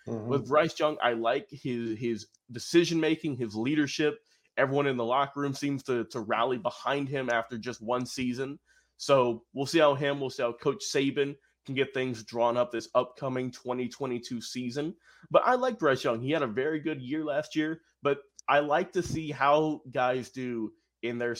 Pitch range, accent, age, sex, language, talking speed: 120-150 Hz, American, 20-39, male, English, 190 wpm